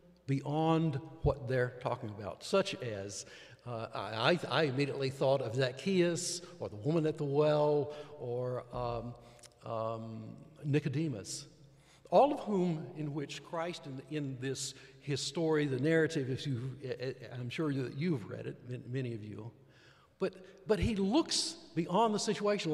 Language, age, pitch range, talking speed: English, 60-79, 130-165 Hz, 145 wpm